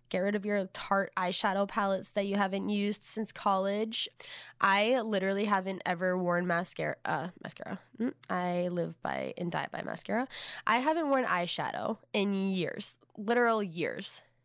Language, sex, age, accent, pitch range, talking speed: English, female, 10-29, American, 175-210 Hz, 150 wpm